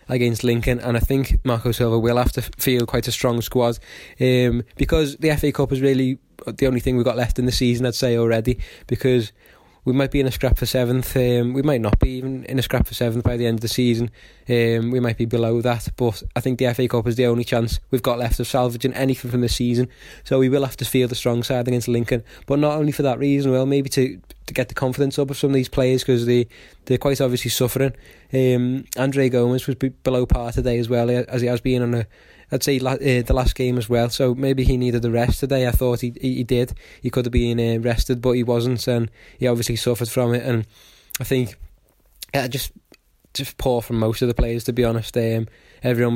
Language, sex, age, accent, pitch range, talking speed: English, male, 20-39, British, 120-130 Hz, 245 wpm